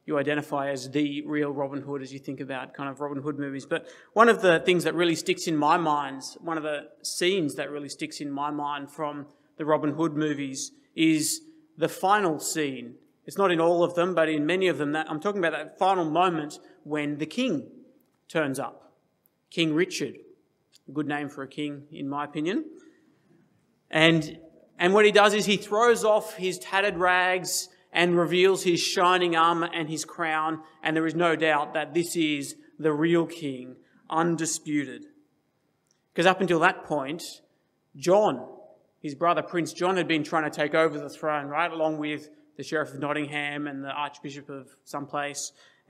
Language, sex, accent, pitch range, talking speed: English, male, Australian, 145-180 Hz, 185 wpm